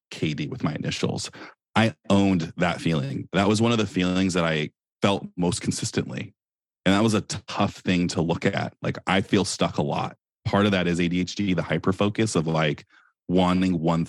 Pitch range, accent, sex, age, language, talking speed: 80-95 Hz, American, male, 30-49, English, 190 wpm